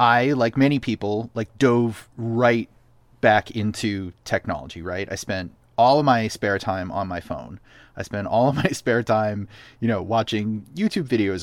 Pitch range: 100-125 Hz